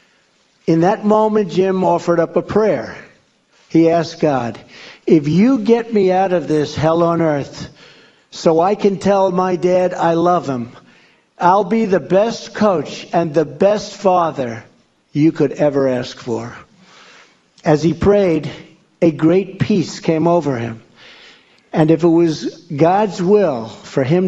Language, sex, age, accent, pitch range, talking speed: English, male, 60-79, American, 145-185 Hz, 150 wpm